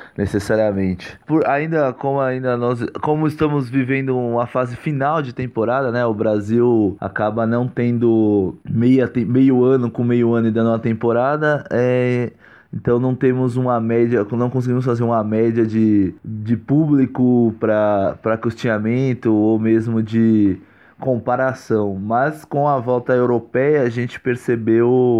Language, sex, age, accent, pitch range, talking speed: Portuguese, male, 20-39, Brazilian, 115-145 Hz, 140 wpm